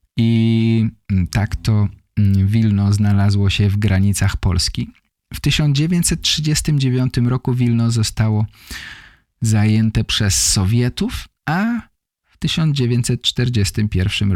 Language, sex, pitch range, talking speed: English, male, 95-120 Hz, 85 wpm